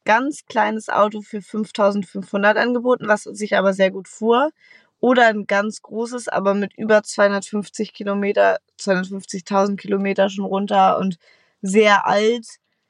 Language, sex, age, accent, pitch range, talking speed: German, female, 20-39, German, 195-230 Hz, 125 wpm